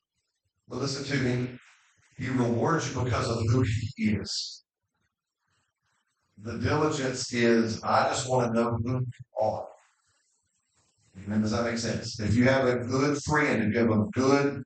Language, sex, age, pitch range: English, male, 50-69, 110-130 Hz